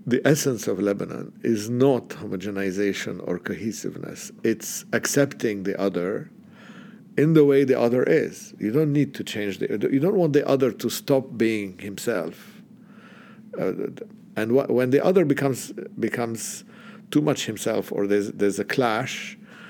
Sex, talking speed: male, 150 wpm